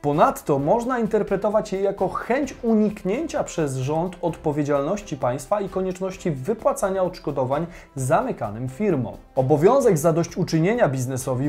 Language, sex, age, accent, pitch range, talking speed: Polish, male, 30-49, native, 145-205 Hz, 105 wpm